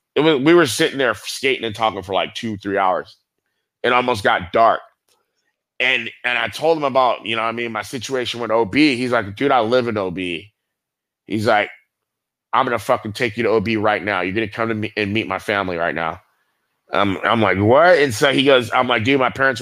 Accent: American